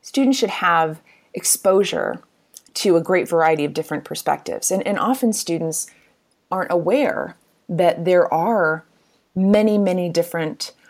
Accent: American